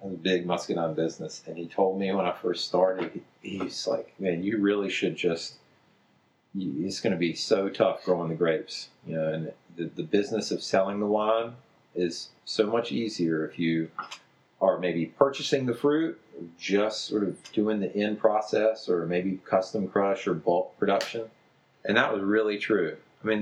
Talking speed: 185 wpm